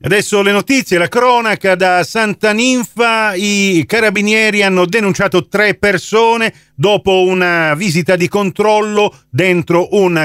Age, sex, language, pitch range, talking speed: 40-59, male, Italian, 145-200 Hz, 125 wpm